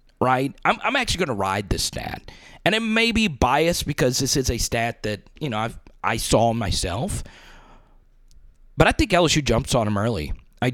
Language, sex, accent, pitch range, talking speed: English, male, American, 120-165 Hz, 195 wpm